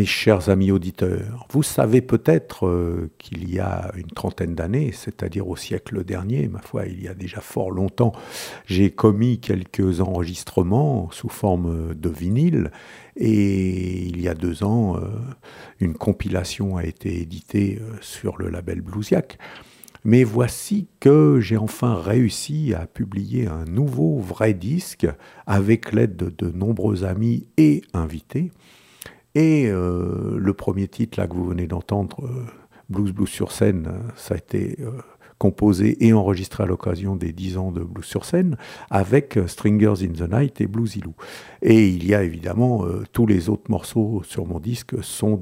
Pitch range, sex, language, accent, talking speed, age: 90-115 Hz, male, French, French, 165 wpm, 50-69